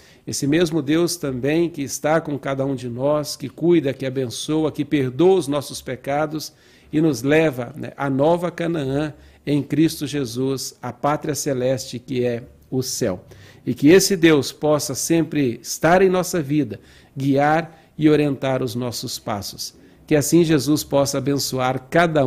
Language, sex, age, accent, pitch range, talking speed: Portuguese, male, 60-79, Brazilian, 130-160 Hz, 160 wpm